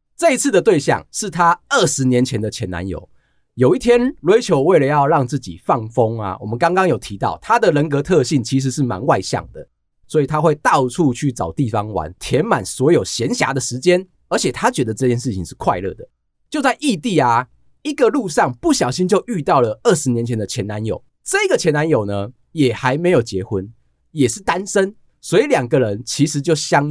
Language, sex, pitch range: Chinese, male, 115-175 Hz